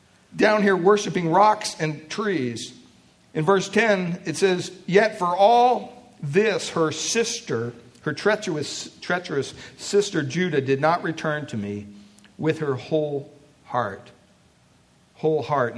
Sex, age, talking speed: male, 60-79, 125 wpm